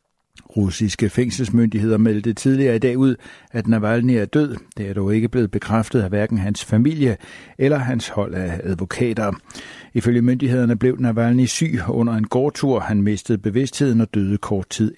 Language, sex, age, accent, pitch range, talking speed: Danish, male, 60-79, native, 105-125 Hz, 165 wpm